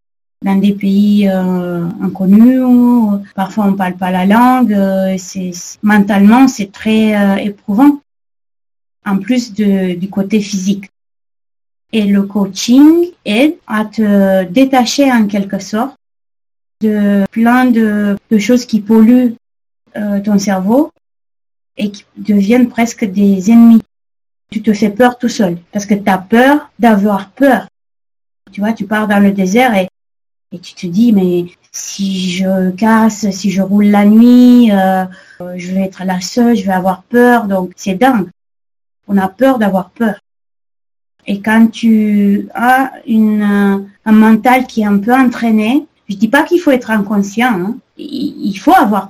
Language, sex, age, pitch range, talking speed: French, female, 30-49, 190-235 Hz, 155 wpm